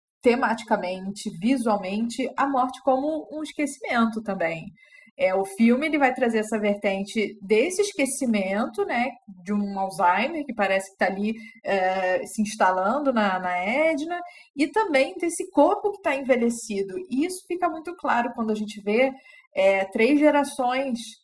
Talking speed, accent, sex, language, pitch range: 145 wpm, Brazilian, female, Portuguese, 200-270 Hz